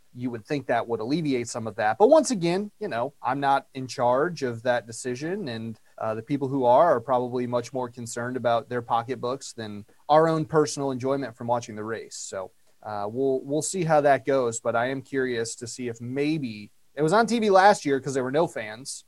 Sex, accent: male, American